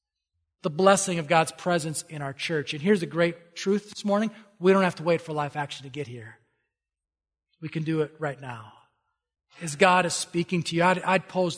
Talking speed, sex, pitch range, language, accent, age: 210 wpm, male, 145-190 Hz, English, American, 40-59